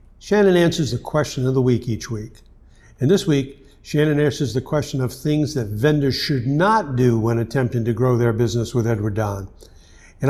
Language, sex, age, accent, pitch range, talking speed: English, male, 60-79, American, 120-155 Hz, 190 wpm